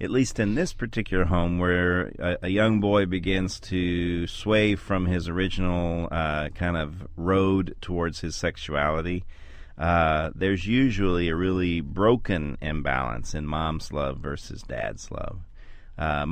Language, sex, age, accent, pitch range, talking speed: English, male, 40-59, American, 80-95 Hz, 140 wpm